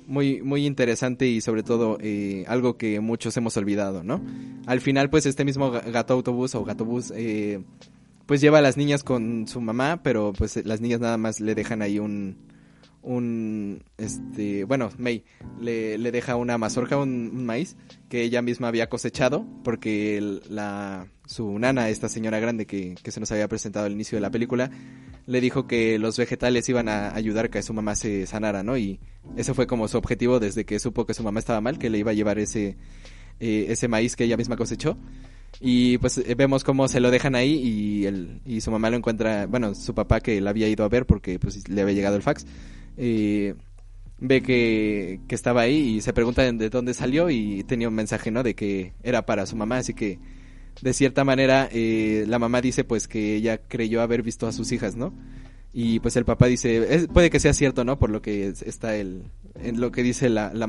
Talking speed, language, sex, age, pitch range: 210 wpm, Spanish, male, 20-39, 105-125 Hz